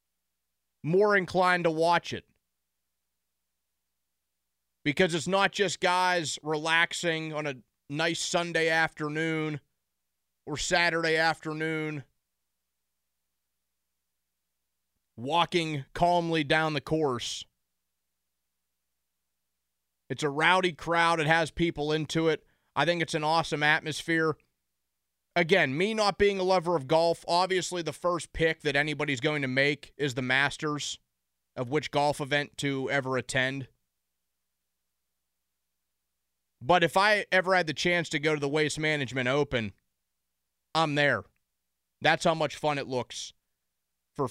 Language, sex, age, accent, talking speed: English, male, 30-49, American, 120 wpm